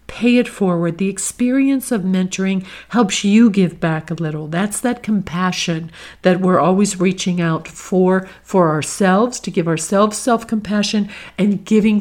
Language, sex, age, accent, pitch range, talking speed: English, female, 50-69, American, 175-220 Hz, 150 wpm